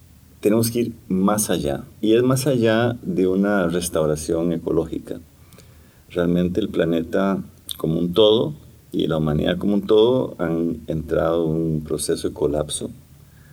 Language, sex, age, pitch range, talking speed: Spanish, male, 50-69, 80-95 Hz, 140 wpm